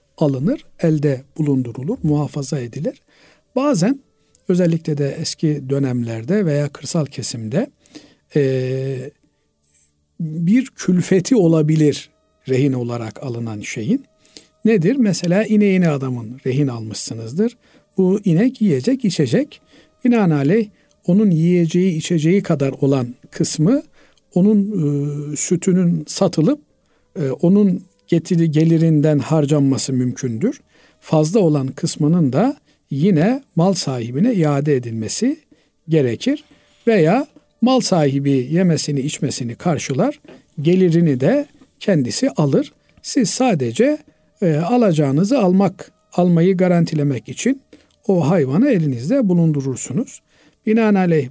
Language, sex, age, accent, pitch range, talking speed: Turkish, male, 50-69, native, 140-195 Hz, 95 wpm